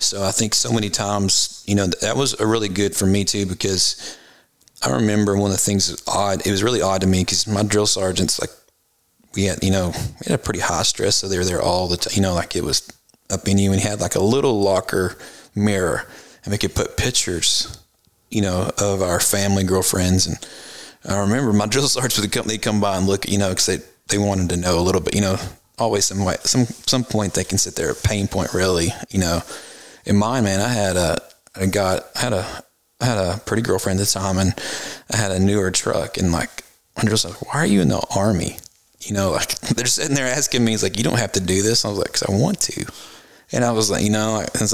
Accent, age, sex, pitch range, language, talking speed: American, 30-49, male, 95-110 Hz, English, 255 wpm